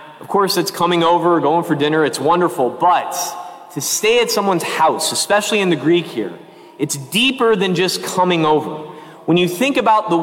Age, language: 30-49, English